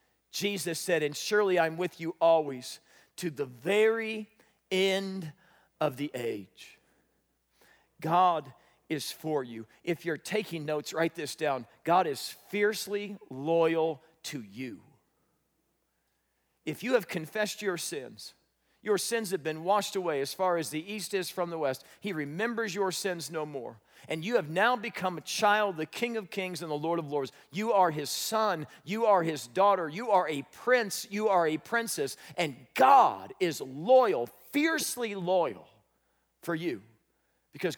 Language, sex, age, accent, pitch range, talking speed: English, male, 40-59, American, 150-205 Hz, 160 wpm